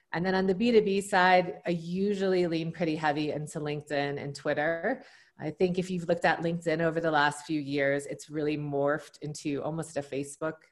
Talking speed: 190 wpm